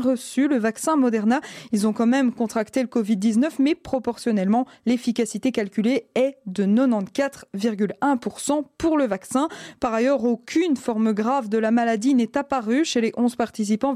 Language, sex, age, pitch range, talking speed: French, female, 20-39, 225-270 Hz, 150 wpm